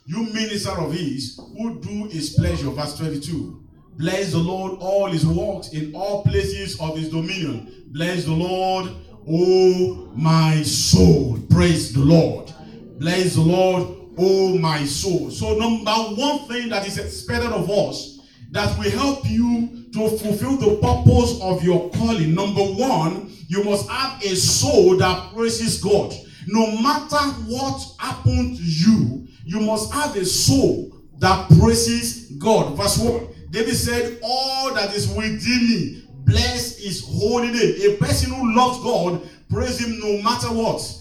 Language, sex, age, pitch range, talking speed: English, male, 50-69, 155-230 Hz, 150 wpm